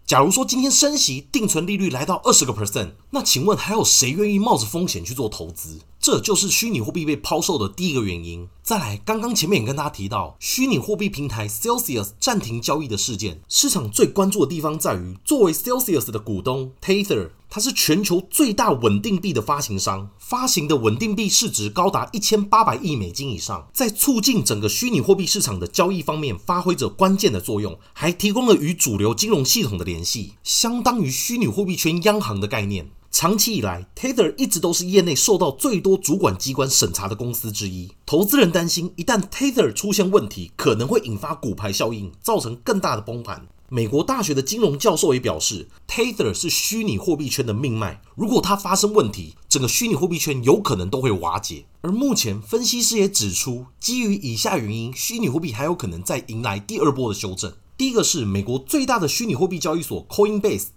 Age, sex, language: 30-49, male, Chinese